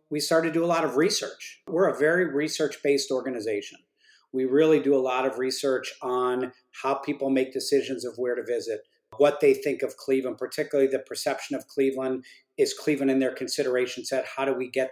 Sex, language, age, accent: male, English, 50-69, American